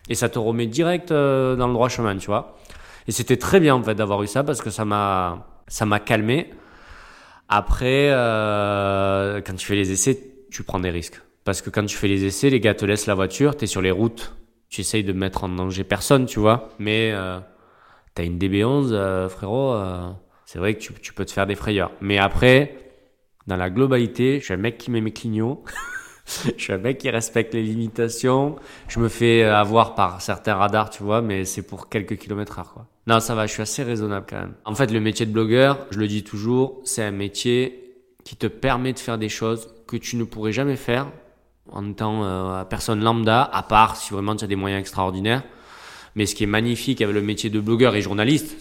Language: French